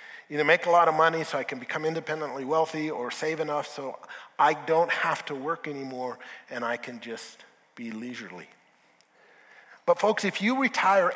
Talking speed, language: 175 wpm, English